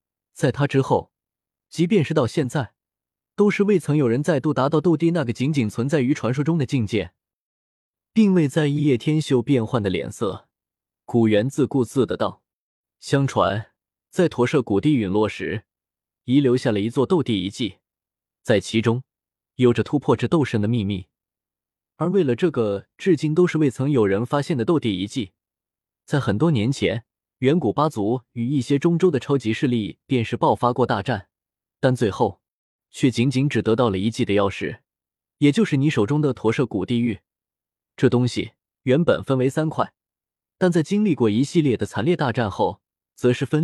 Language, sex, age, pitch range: Chinese, male, 20-39, 110-155 Hz